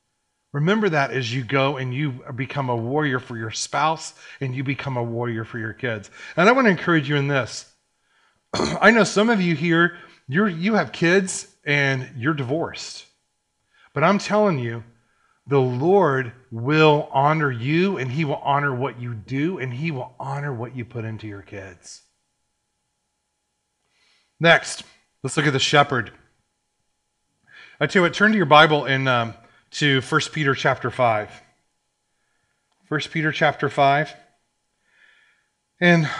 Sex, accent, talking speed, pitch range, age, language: male, American, 155 wpm, 130-165 Hz, 30-49, English